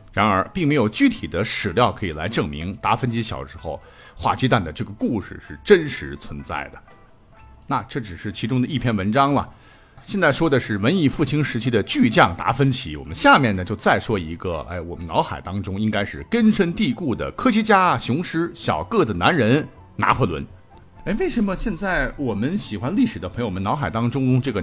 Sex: male